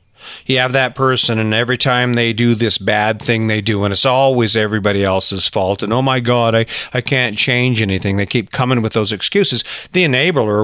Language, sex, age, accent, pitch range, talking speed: English, male, 40-59, American, 105-135 Hz, 210 wpm